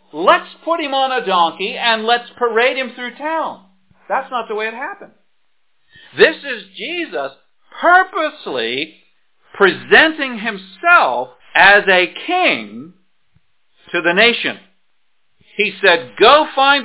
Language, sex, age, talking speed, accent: English, male, 50-69, 120 wpm, American